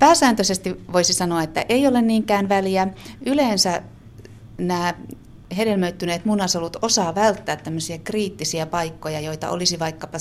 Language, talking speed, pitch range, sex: Finnish, 110 wpm, 150-200 Hz, female